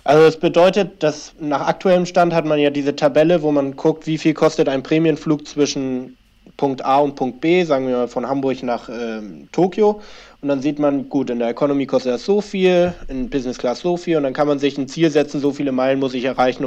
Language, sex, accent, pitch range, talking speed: German, male, German, 130-160 Hz, 235 wpm